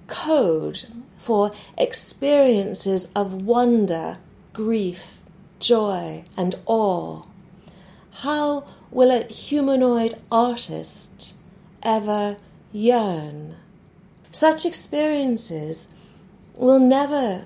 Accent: British